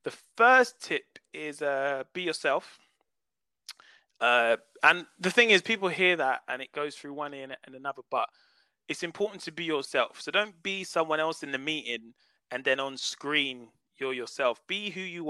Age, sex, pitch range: 20-39, male, 135-190 Hz